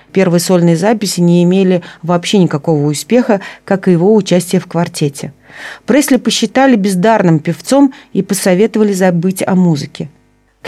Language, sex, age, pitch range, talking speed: Russian, female, 40-59, 170-205 Hz, 135 wpm